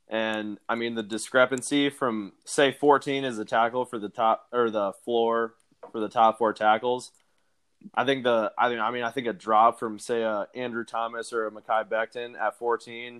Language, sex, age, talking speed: English, male, 20-39, 195 wpm